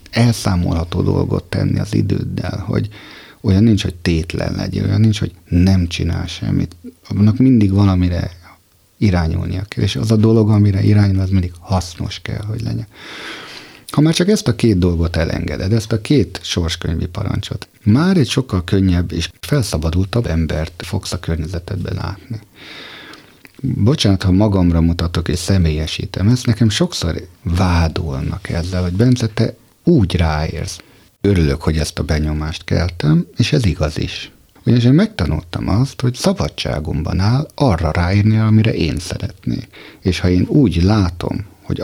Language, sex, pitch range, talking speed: Hungarian, male, 85-115 Hz, 145 wpm